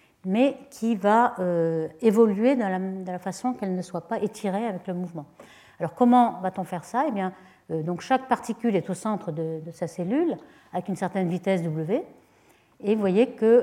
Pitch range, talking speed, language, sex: 180-230 Hz, 200 wpm, French, female